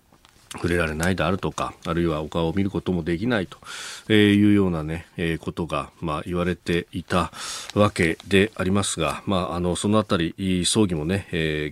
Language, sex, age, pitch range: Japanese, male, 40-59, 95-155 Hz